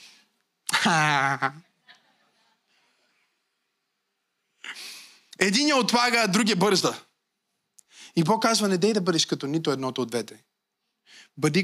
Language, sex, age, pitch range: Bulgarian, male, 20-39, 150-210 Hz